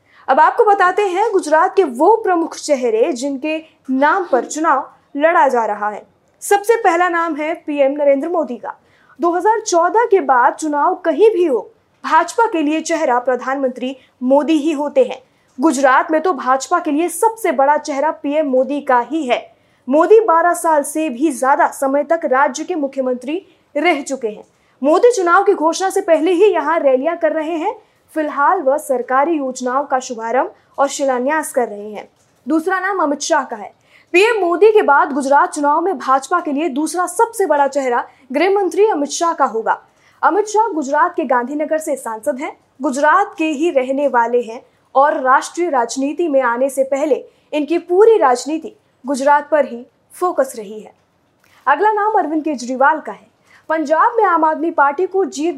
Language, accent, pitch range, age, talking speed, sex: Hindi, native, 270-345 Hz, 20-39, 170 wpm, female